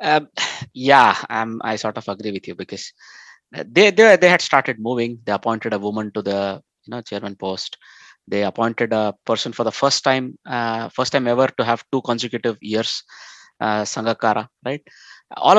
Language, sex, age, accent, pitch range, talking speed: English, male, 20-39, Indian, 105-130 Hz, 185 wpm